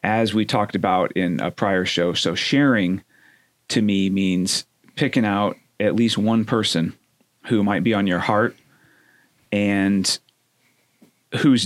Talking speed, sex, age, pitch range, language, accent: 140 wpm, male, 30-49, 95-120 Hz, English, American